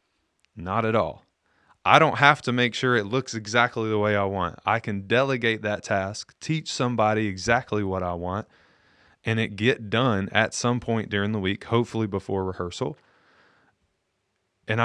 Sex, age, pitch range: male, 30-49, 95-115 Hz